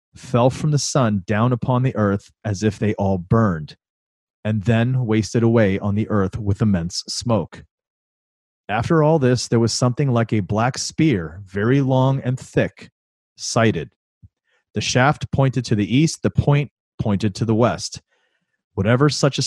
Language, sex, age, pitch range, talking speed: English, male, 30-49, 105-130 Hz, 165 wpm